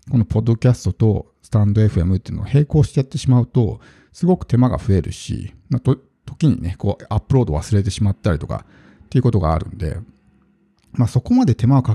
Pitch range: 100-145 Hz